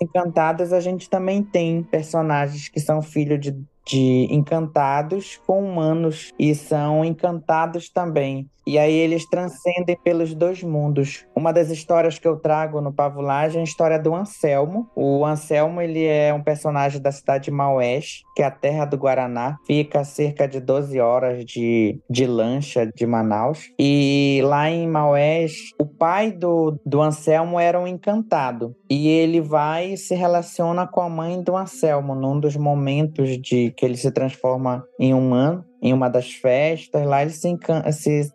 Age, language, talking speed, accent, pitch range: 20-39, Portuguese, 165 wpm, Brazilian, 150-190 Hz